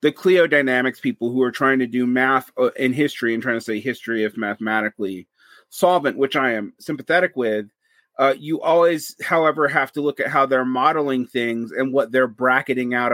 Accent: American